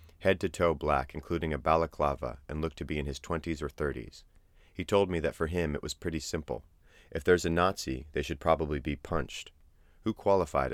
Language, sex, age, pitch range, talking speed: English, male, 30-49, 70-85 Hz, 195 wpm